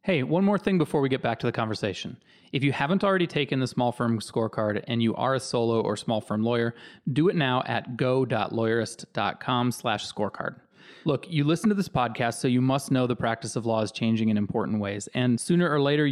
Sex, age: male, 30-49